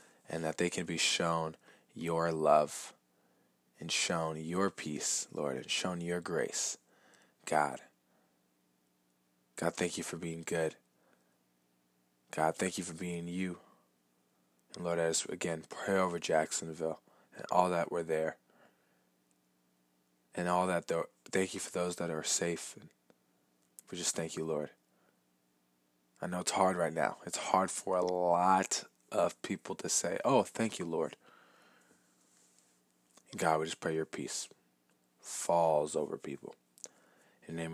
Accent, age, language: American, 20-39, English